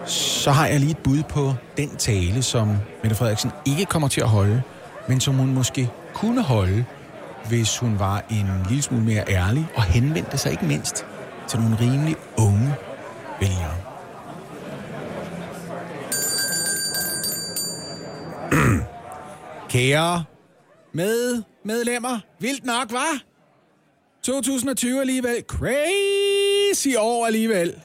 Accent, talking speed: native, 110 wpm